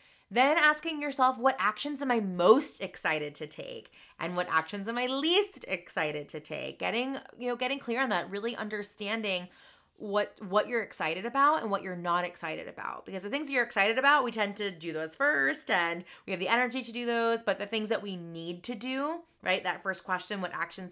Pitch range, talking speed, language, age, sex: 170-230 Hz, 215 wpm, English, 30-49, female